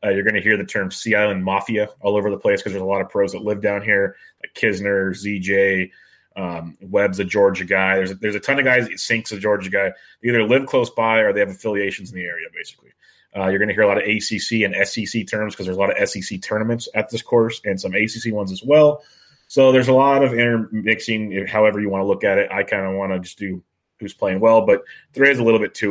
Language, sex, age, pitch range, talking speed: English, male, 30-49, 100-115 Hz, 260 wpm